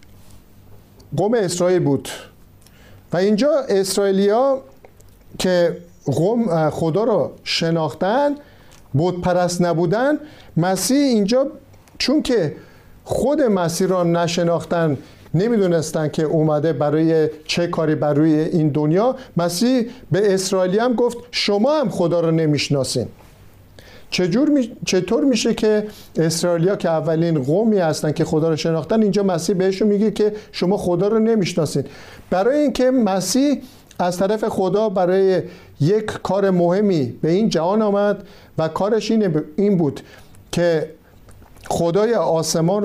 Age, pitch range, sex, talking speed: 50-69, 155-210 Hz, male, 115 wpm